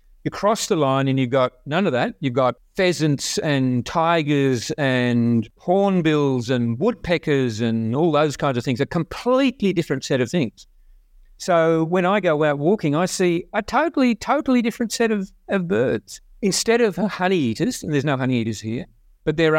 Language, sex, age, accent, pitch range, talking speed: English, male, 50-69, Australian, 130-180 Hz, 180 wpm